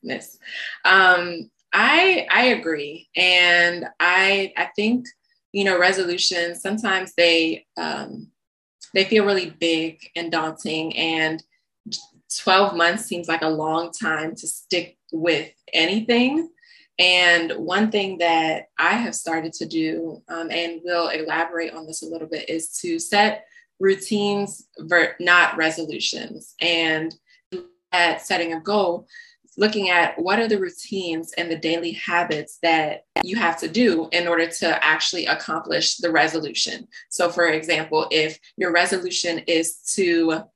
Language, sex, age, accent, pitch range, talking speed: English, female, 20-39, American, 165-195 Hz, 135 wpm